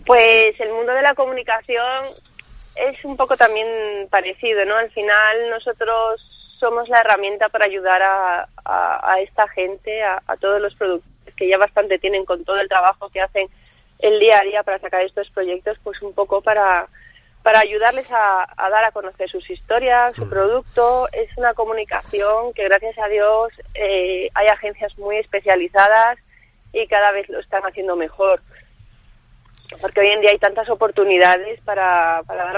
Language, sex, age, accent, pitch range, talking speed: Spanish, female, 30-49, Spanish, 185-225 Hz, 170 wpm